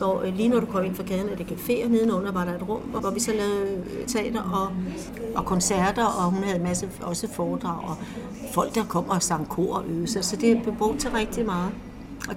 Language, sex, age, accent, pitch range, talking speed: Danish, female, 60-79, native, 190-230 Hz, 245 wpm